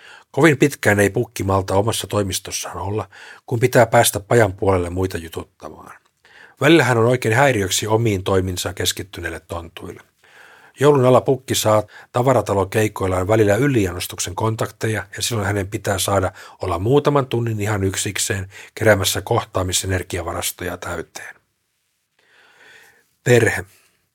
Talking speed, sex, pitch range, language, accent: 115 wpm, male, 95-115 Hz, Finnish, native